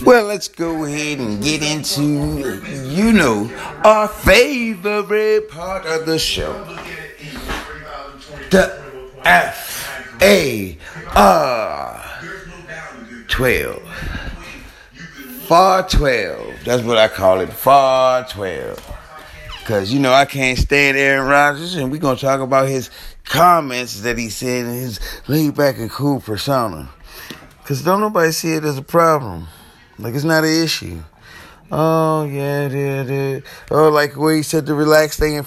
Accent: American